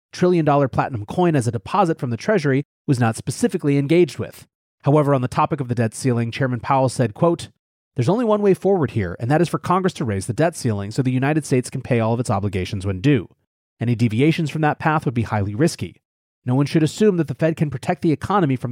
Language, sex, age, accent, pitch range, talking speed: English, male, 30-49, American, 125-170 Hz, 240 wpm